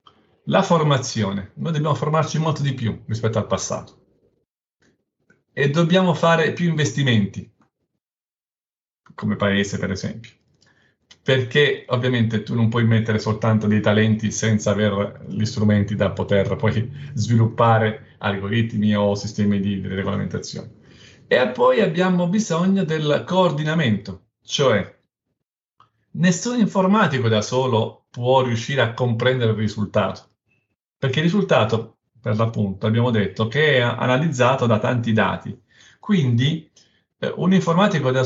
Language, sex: Italian, male